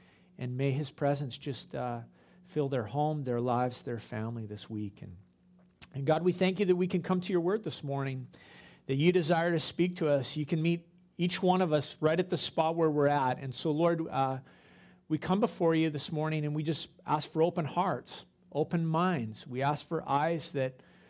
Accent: American